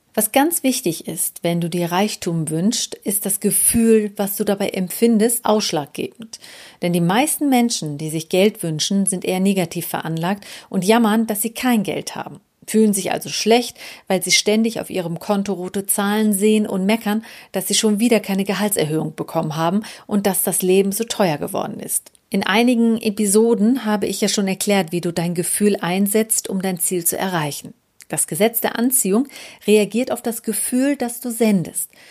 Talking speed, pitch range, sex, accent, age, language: 180 wpm, 180-225 Hz, female, German, 40-59, German